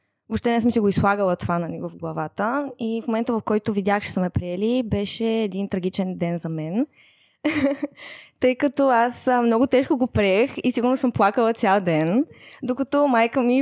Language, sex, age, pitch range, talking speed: Bulgarian, female, 20-39, 195-245 Hz, 190 wpm